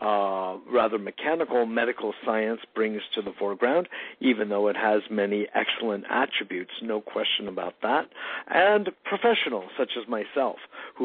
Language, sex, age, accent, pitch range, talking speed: English, male, 50-69, American, 105-135 Hz, 140 wpm